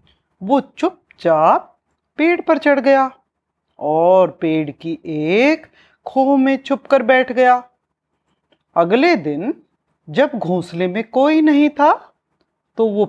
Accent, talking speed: native, 120 wpm